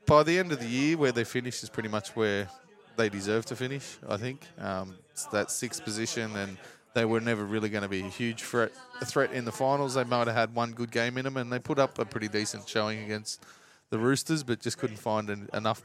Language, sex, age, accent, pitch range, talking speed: English, male, 20-39, Australian, 110-140 Hz, 240 wpm